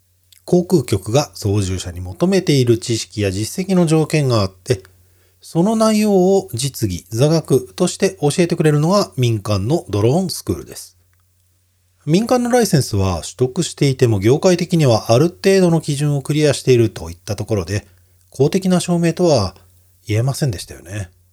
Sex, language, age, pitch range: male, Japanese, 40-59, 90-150 Hz